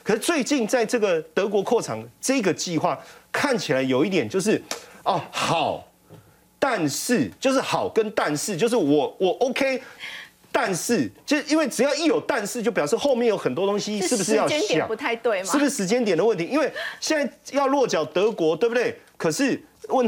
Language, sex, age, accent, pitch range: Chinese, male, 30-49, native, 170-255 Hz